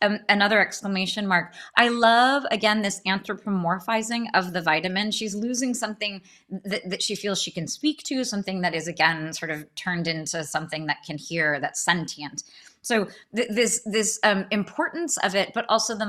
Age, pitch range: 20-39, 170-230 Hz